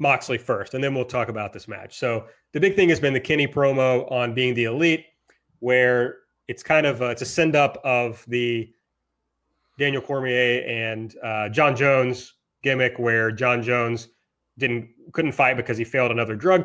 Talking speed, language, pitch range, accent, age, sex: 185 wpm, English, 120-150 Hz, American, 30-49, male